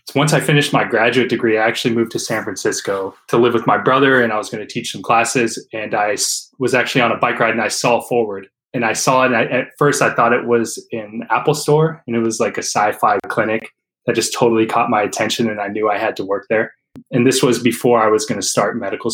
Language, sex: English, male